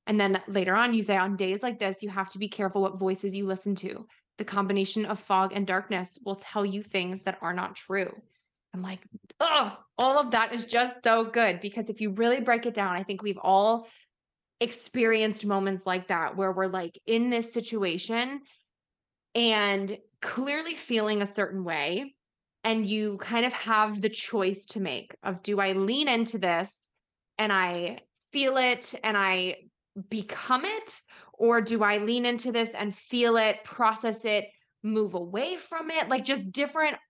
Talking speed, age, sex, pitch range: 180 wpm, 20-39, female, 195-235 Hz